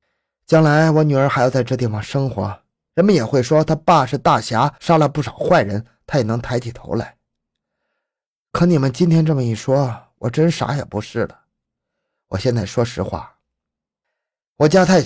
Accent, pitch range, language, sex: native, 110-160 Hz, Chinese, male